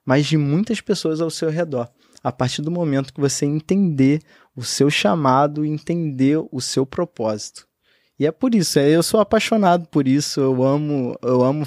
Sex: male